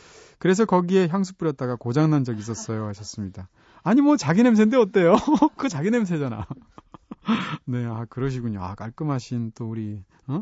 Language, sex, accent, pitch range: Korean, male, native, 120-170 Hz